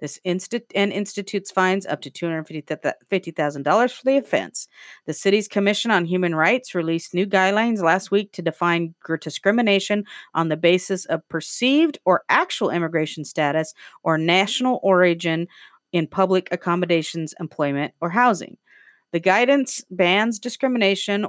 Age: 40-59